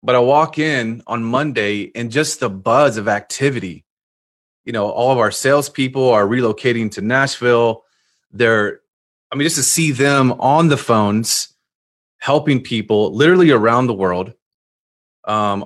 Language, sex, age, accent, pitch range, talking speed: English, male, 30-49, American, 110-135 Hz, 150 wpm